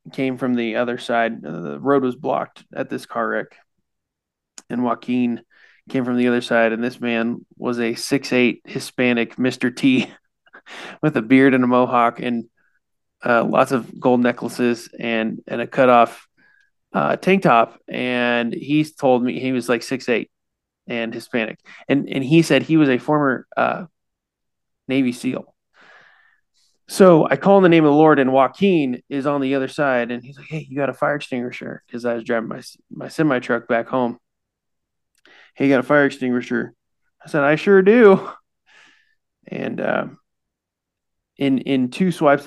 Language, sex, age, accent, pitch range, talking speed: English, male, 20-39, American, 120-145 Hz, 175 wpm